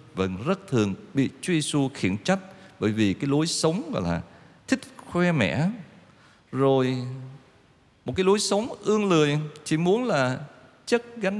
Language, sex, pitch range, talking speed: Vietnamese, male, 105-165 Hz, 160 wpm